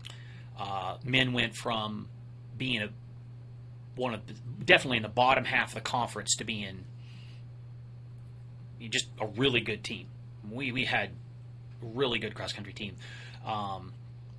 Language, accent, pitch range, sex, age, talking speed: English, American, 115-125 Hz, male, 30-49, 140 wpm